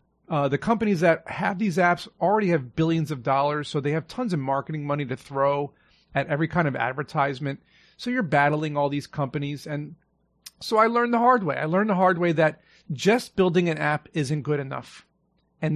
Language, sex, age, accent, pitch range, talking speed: English, male, 40-59, American, 150-195 Hz, 200 wpm